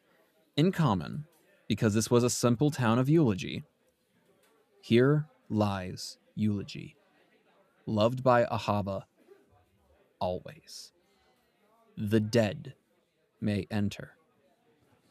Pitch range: 110-150 Hz